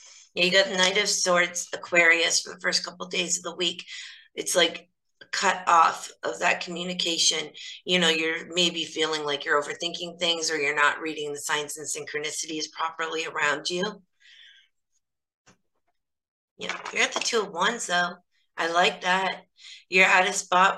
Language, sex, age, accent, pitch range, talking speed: English, female, 30-49, American, 160-185 Hz, 175 wpm